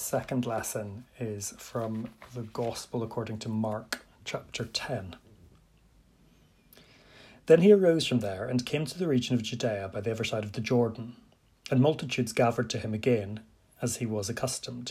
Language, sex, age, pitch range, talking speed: English, male, 30-49, 110-130 Hz, 160 wpm